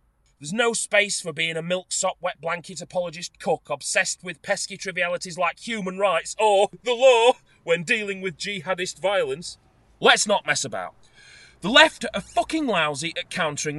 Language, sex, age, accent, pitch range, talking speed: English, male, 30-49, British, 135-205 Hz, 160 wpm